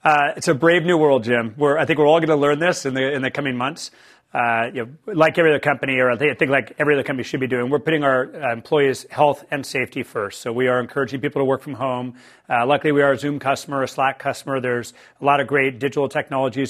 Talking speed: 260 wpm